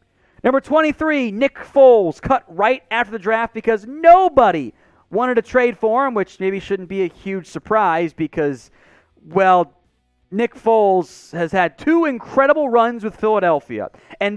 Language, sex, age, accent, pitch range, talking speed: English, male, 40-59, American, 170-240 Hz, 145 wpm